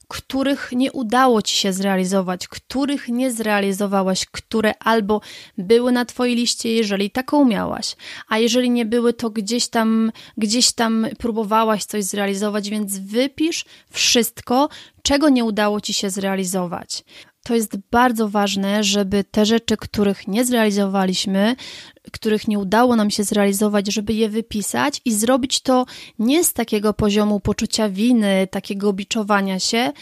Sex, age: female, 30-49